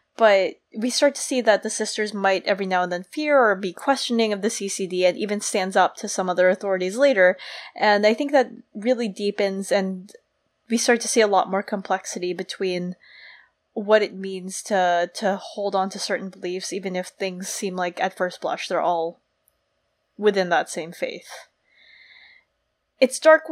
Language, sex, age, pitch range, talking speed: English, female, 20-39, 190-240 Hz, 180 wpm